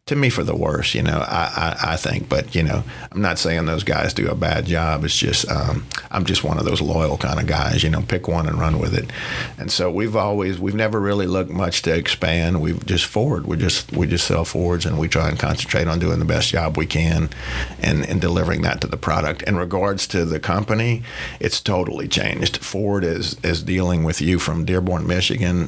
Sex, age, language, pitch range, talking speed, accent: male, 50-69, English, 80-90 Hz, 230 wpm, American